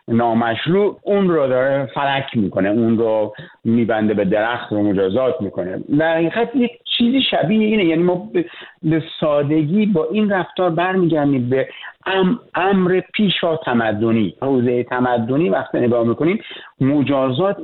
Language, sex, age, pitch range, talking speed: Persian, male, 50-69, 125-175 Hz, 130 wpm